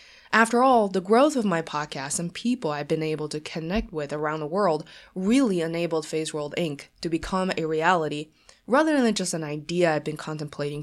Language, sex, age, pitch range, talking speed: English, female, 20-39, 165-225 Hz, 195 wpm